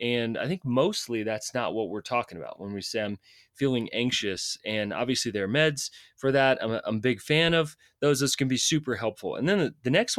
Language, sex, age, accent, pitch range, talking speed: English, male, 30-49, American, 105-140 Hz, 235 wpm